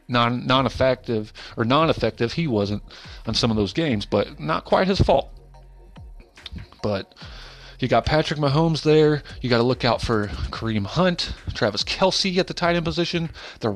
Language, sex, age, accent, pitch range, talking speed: English, male, 30-49, American, 105-145 Hz, 165 wpm